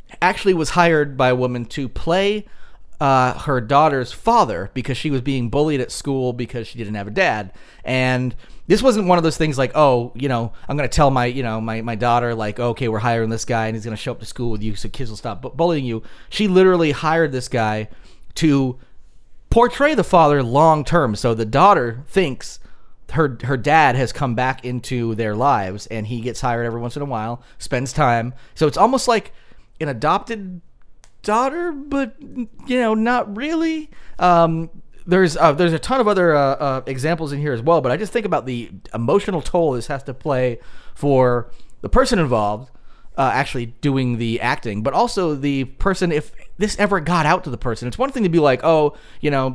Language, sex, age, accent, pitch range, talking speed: English, male, 30-49, American, 120-165 Hz, 210 wpm